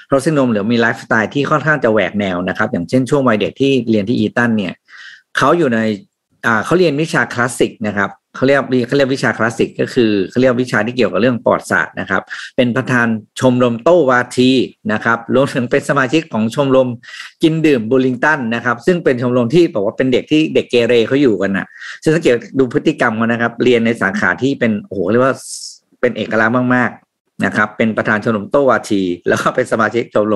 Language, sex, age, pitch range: Thai, male, 50-69, 110-135 Hz